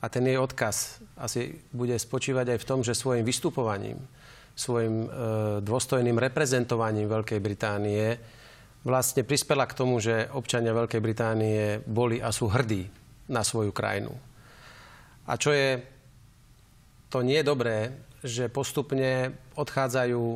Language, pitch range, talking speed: Slovak, 115-130 Hz, 125 wpm